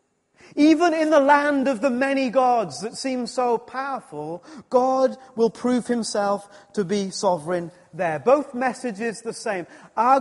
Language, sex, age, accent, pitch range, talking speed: English, male, 40-59, British, 185-260 Hz, 145 wpm